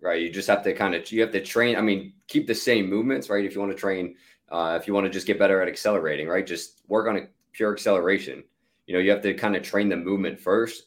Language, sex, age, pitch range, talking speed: English, male, 20-39, 90-110 Hz, 280 wpm